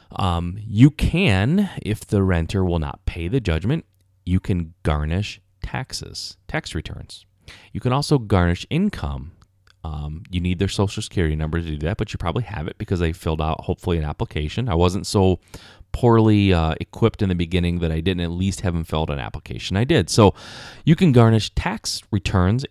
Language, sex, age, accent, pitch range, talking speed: English, male, 30-49, American, 85-115 Hz, 185 wpm